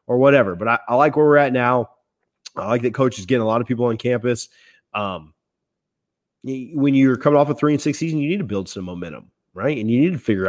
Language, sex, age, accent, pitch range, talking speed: English, male, 30-49, American, 115-150 Hz, 250 wpm